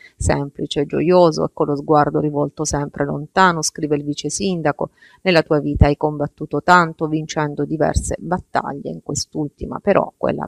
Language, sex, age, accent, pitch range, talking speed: Italian, female, 30-49, native, 145-180 Hz, 150 wpm